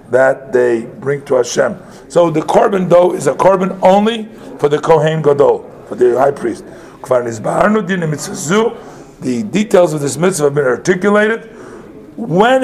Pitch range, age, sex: 140-195 Hz, 50-69, male